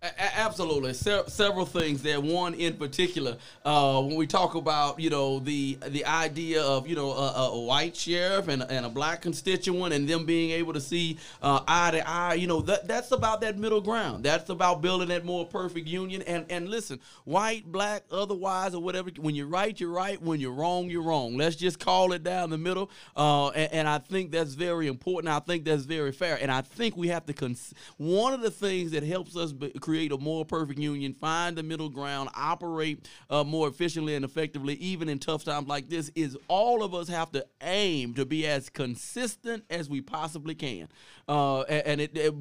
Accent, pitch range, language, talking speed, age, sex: American, 150-180 Hz, English, 215 wpm, 40-59, male